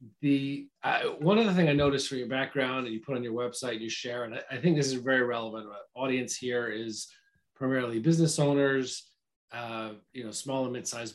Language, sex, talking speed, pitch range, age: English, male, 210 wpm, 120-150 Hz, 30-49